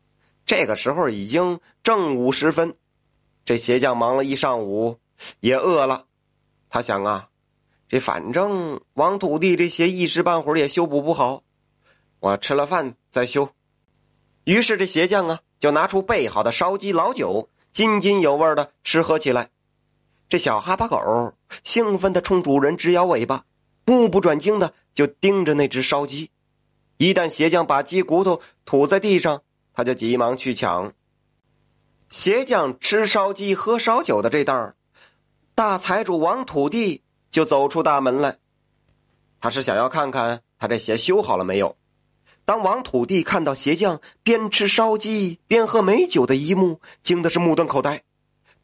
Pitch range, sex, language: 140-195 Hz, male, Chinese